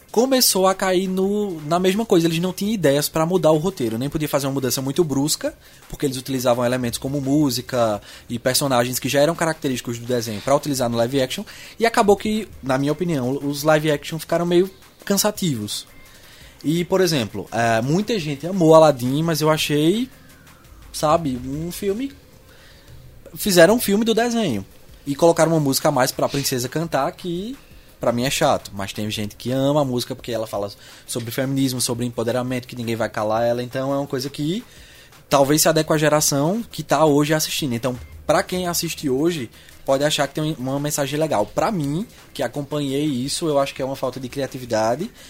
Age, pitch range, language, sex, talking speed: 20-39, 125-165 Hz, Portuguese, male, 190 wpm